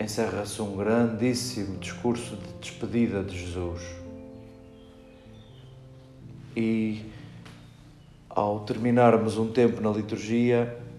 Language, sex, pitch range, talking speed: Portuguese, male, 105-125 Hz, 80 wpm